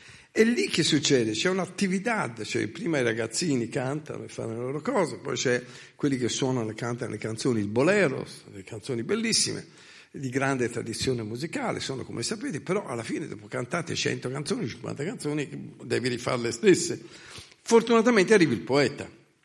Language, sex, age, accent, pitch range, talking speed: Italian, male, 50-69, native, 115-160 Hz, 165 wpm